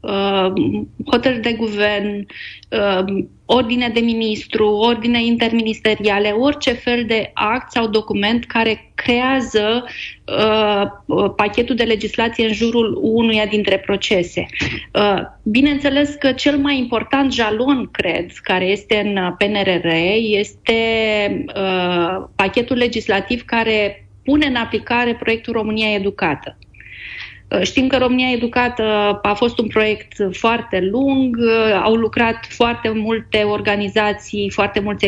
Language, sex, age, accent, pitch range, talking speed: Romanian, female, 20-39, native, 200-240 Hz, 105 wpm